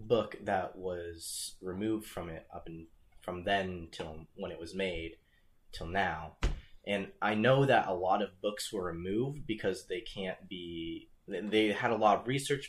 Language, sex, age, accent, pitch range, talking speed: English, male, 20-39, American, 85-105 Hz, 175 wpm